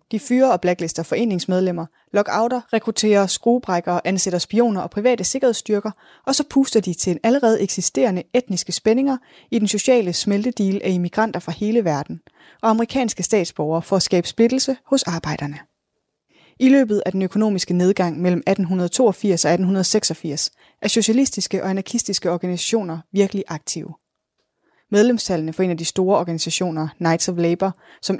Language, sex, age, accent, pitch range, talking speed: Danish, female, 20-39, native, 175-230 Hz, 145 wpm